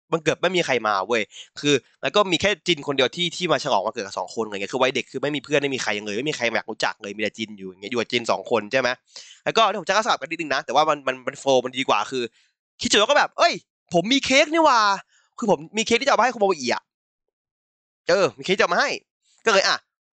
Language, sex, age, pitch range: Thai, male, 20-39, 140-220 Hz